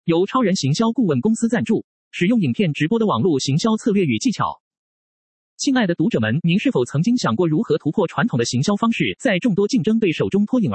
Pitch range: 175-230 Hz